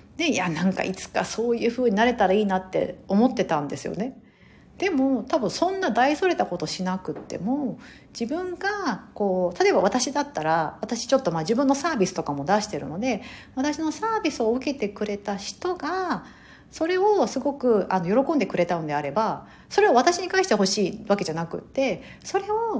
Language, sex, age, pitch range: Japanese, female, 50-69, 180-285 Hz